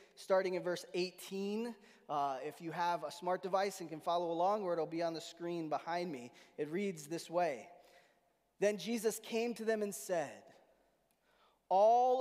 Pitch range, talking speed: 185-230 Hz, 175 wpm